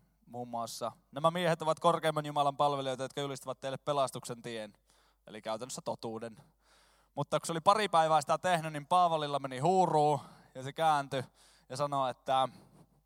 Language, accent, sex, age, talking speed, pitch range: Finnish, native, male, 20-39, 155 wpm, 125-160 Hz